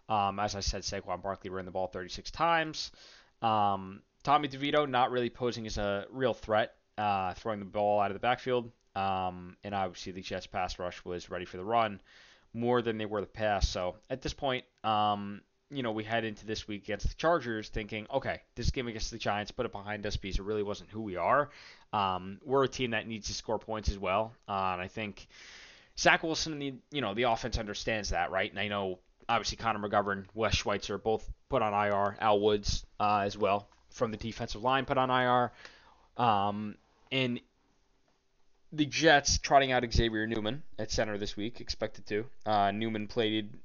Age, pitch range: 20-39, 100-125 Hz